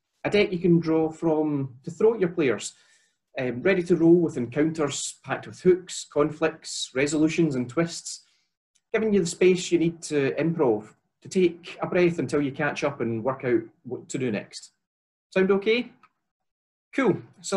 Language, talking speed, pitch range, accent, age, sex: English, 175 wpm, 130-170 Hz, British, 30-49, male